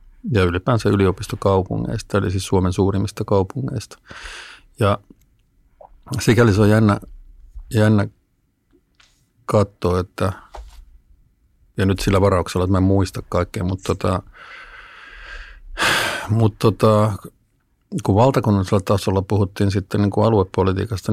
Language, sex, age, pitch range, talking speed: Finnish, male, 50-69, 95-110 Hz, 105 wpm